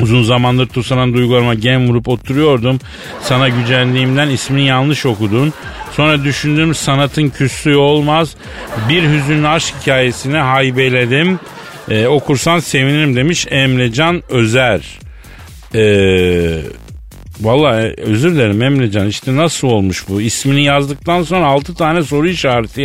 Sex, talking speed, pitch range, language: male, 115 wpm, 120-160 Hz, Turkish